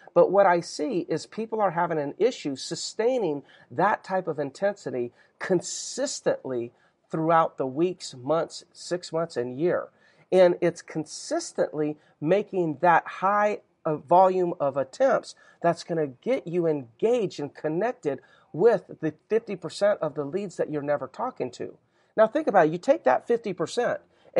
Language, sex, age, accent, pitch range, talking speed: English, male, 40-59, American, 150-195 Hz, 150 wpm